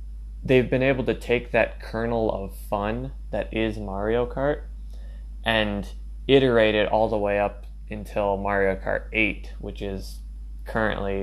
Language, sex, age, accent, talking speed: English, male, 20-39, American, 145 wpm